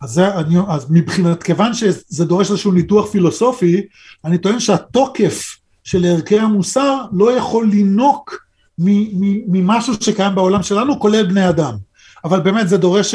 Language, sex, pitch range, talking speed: Hebrew, male, 175-215 Hz, 140 wpm